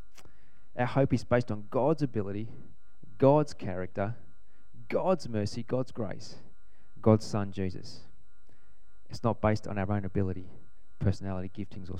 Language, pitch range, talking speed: English, 100-135 Hz, 130 wpm